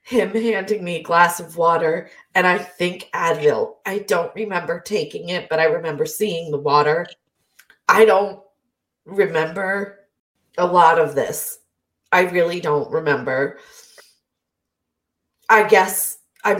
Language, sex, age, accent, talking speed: English, female, 30-49, American, 130 wpm